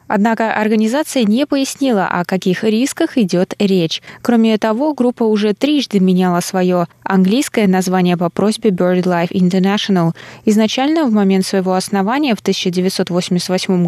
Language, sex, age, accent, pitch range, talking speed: Russian, female, 20-39, native, 185-235 Hz, 125 wpm